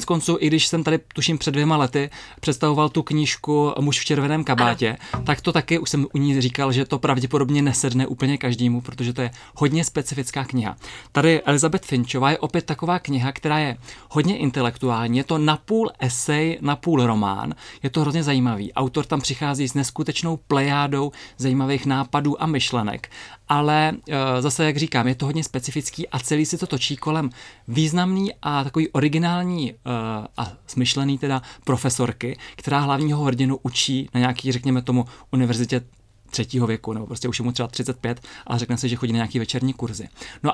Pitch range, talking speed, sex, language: 125-150 Hz, 175 wpm, male, Czech